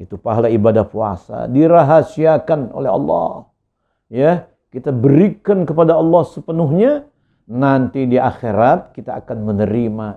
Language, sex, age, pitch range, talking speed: Indonesian, male, 50-69, 95-135 Hz, 110 wpm